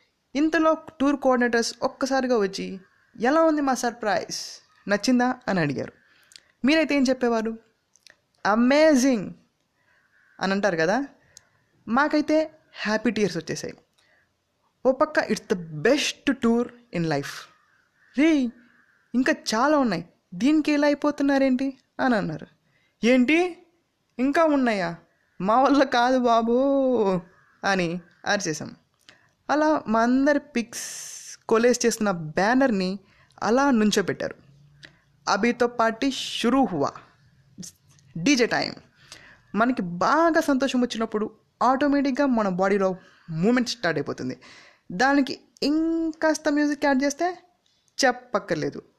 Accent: native